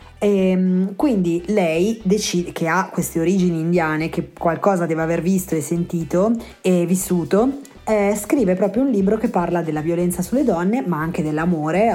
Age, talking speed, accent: 30-49, 155 wpm, native